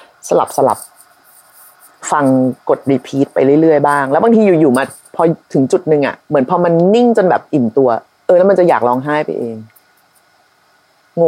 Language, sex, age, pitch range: Thai, female, 30-49, 160-235 Hz